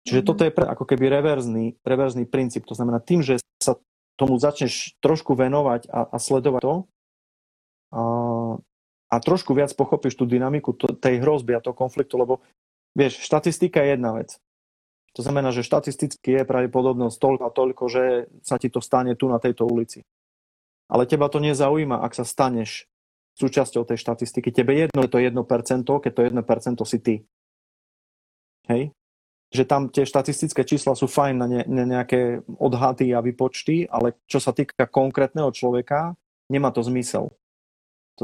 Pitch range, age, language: 120-140 Hz, 30-49, Slovak